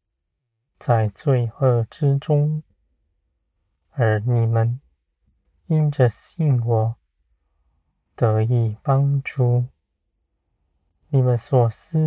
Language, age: Chinese, 20-39